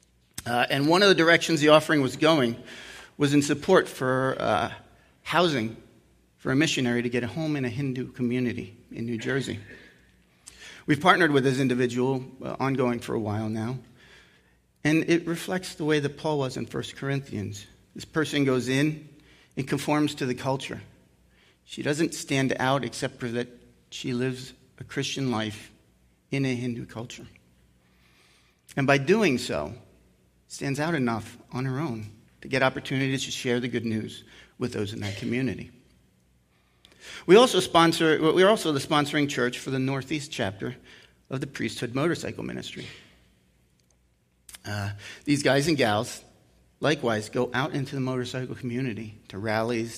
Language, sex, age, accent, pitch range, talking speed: English, male, 40-59, American, 105-145 Hz, 155 wpm